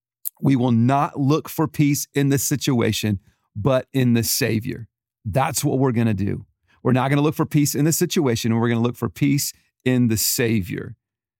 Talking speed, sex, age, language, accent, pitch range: 205 wpm, male, 40-59, English, American, 115-140 Hz